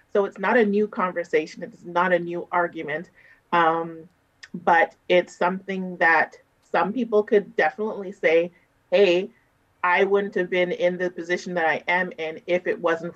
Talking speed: 165 wpm